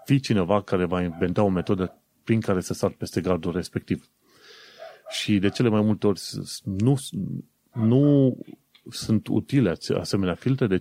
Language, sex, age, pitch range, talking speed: Romanian, male, 30-49, 95-125 Hz, 150 wpm